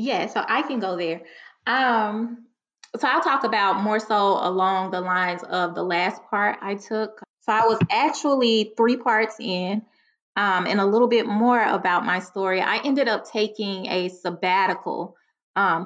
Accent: American